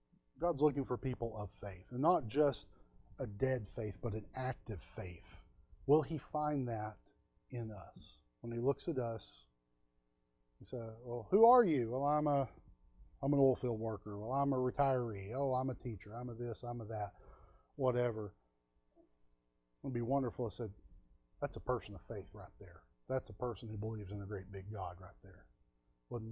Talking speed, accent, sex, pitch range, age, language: 185 wpm, American, male, 95-135 Hz, 40-59, English